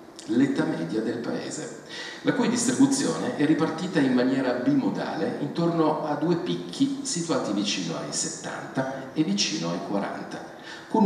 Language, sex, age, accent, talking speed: Italian, male, 50-69, native, 135 wpm